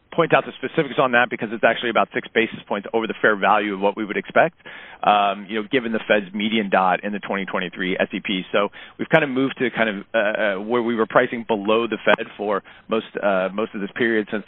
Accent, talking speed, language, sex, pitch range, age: American, 240 wpm, English, male, 100-125 Hz, 40-59